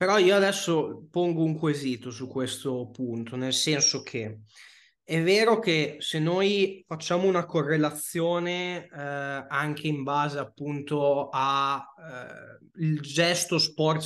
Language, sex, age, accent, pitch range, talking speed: Italian, male, 20-39, native, 135-160 Hz, 125 wpm